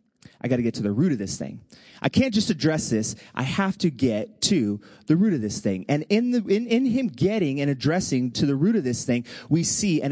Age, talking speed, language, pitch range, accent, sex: 30-49, 255 wpm, English, 140-220 Hz, American, male